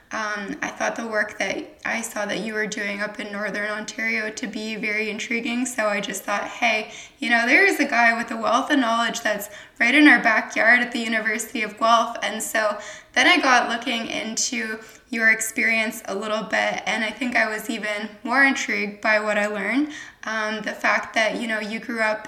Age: 10-29